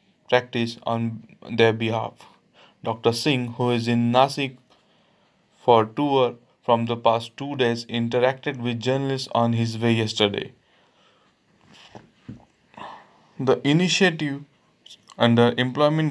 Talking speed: 110 wpm